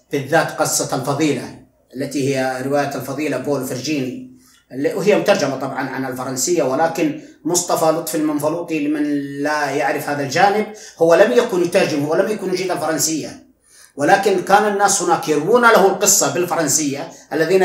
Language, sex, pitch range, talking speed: Arabic, male, 145-180 Hz, 135 wpm